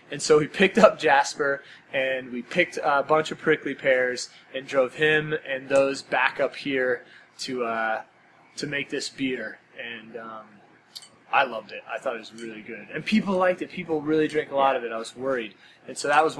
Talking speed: 210 wpm